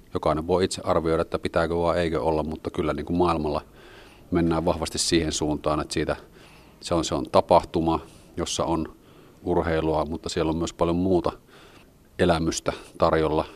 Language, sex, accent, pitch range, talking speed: Finnish, male, native, 80-85 Hz, 160 wpm